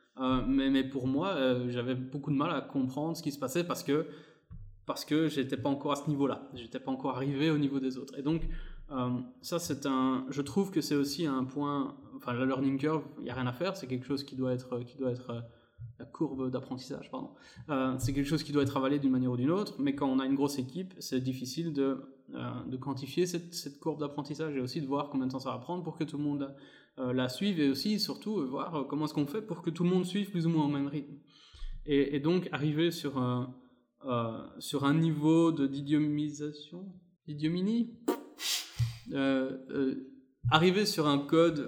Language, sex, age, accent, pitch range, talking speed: French, male, 20-39, French, 130-160 Hz, 225 wpm